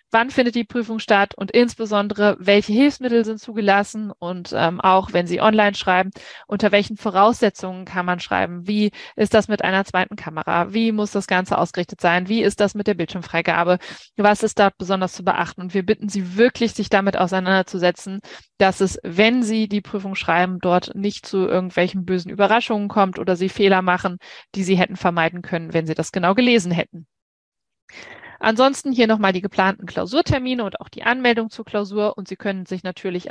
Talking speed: 185 wpm